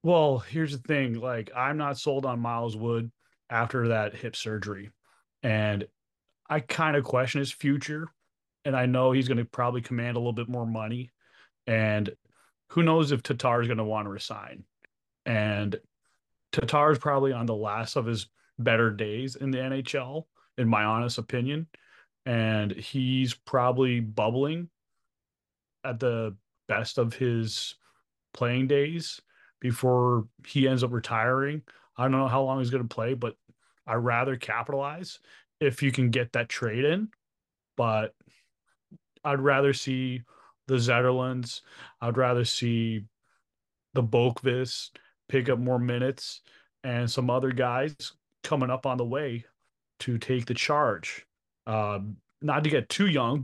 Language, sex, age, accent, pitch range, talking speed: English, male, 30-49, American, 115-135 Hz, 150 wpm